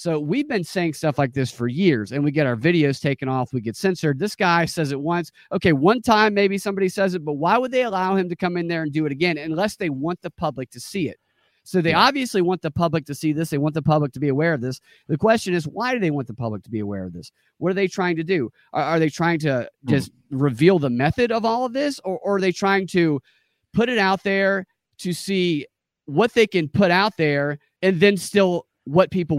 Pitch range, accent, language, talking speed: 150-195 Hz, American, English, 260 wpm